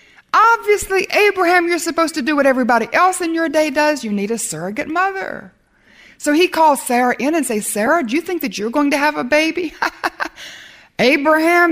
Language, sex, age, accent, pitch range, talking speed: English, female, 60-79, American, 210-305 Hz, 190 wpm